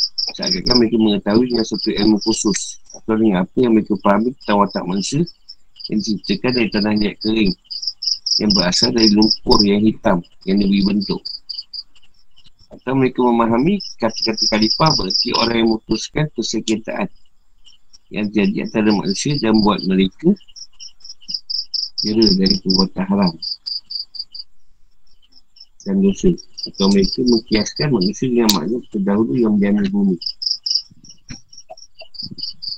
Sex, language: male, Malay